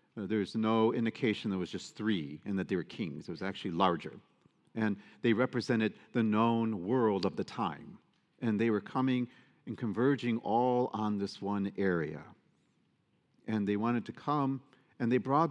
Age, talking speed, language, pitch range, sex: 50-69, 175 wpm, English, 110-140 Hz, male